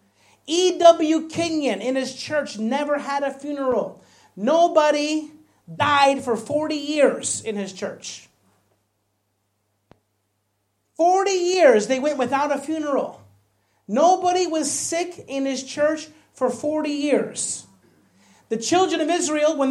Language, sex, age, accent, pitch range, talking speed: English, male, 40-59, American, 220-300 Hz, 115 wpm